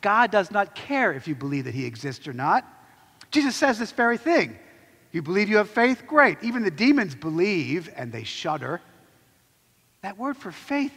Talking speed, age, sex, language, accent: 185 wpm, 50-69, male, English, American